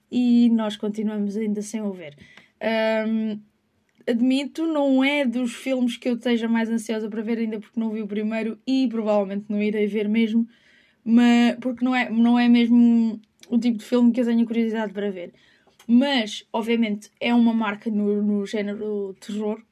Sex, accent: female, Brazilian